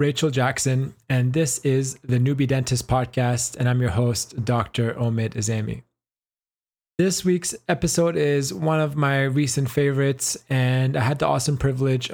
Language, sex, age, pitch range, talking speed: English, male, 20-39, 125-145 Hz, 155 wpm